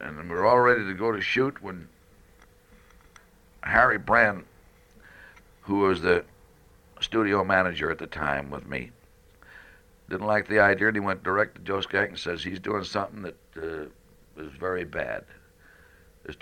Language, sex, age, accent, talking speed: English, male, 60-79, American, 160 wpm